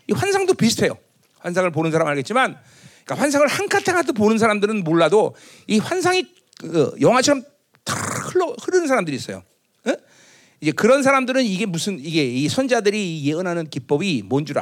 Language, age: Korean, 40-59